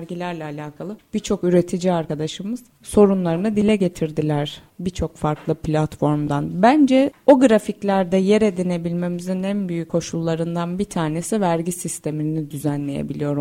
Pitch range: 155-190 Hz